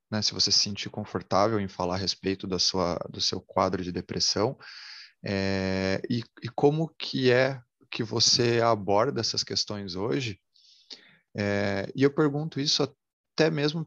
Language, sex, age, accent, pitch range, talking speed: Portuguese, male, 30-49, Brazilian, 100-135 Hz, 155 wpm